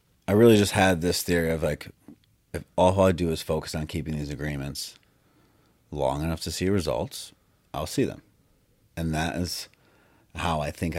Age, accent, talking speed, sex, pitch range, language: 30-49, American, 175 wpm, male, 80-100 Hz, English